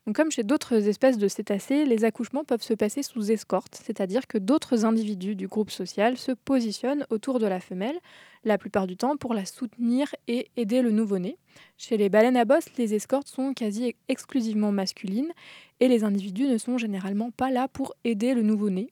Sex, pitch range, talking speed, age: female, 205-250 Hz, 190 wpm, 20-39